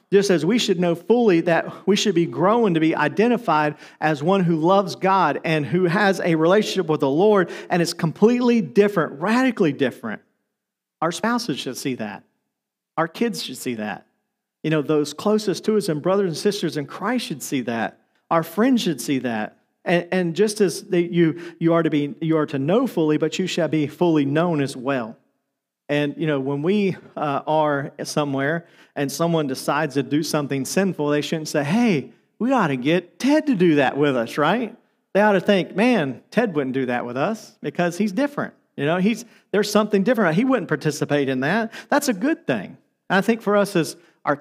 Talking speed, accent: 205 wpm, American